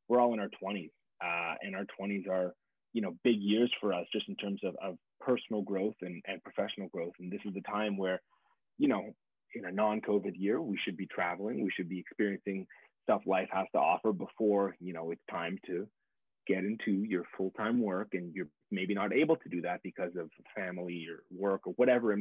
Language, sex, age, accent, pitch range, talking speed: English, male, 30-49, American, 95-115 Hz, 215 wpm